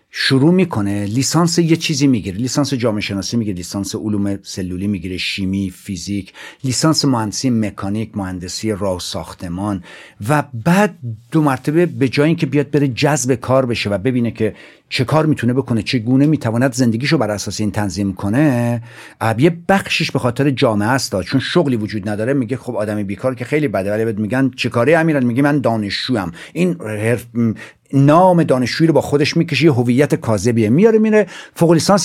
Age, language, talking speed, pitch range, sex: 50-69, Persian, 165 wpm, 110-160 Hz, male